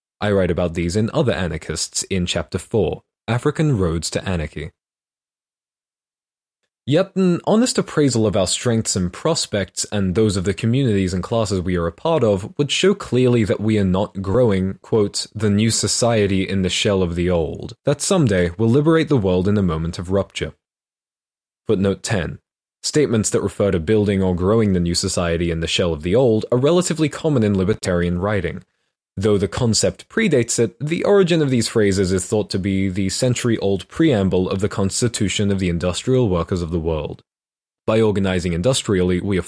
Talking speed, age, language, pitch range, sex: 180 wpm, 20-39, English, 90-115 Hz, male